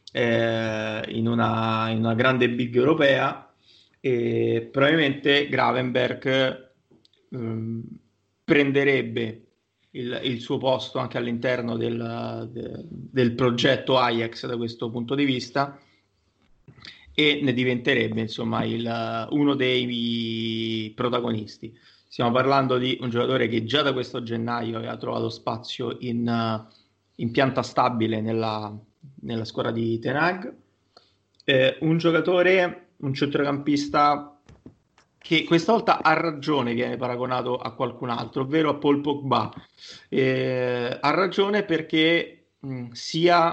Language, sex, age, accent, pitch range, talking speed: Italian, male, 30-49, native, 115-140 Hz, 115 wpm